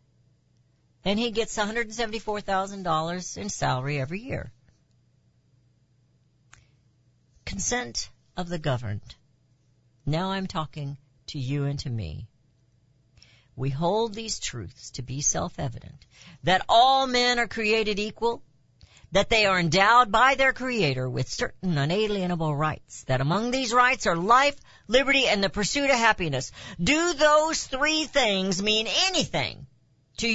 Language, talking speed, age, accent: English, 125 wpm, 50-69, American